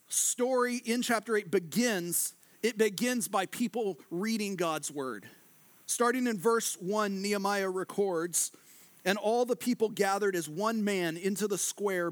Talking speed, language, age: 145 wpm, English, 40-59